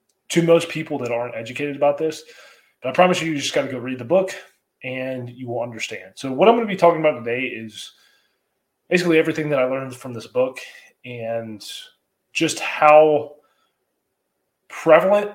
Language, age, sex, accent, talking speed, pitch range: English, 20-39, male, American, 180 wpm, 120-155 Hz